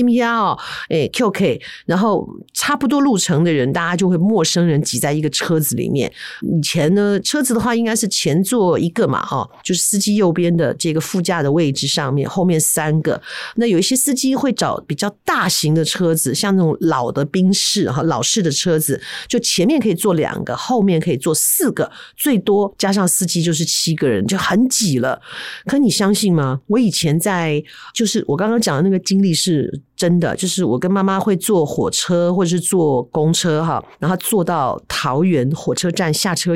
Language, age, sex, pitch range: Chinese, 50-69, female, 160-210 Hz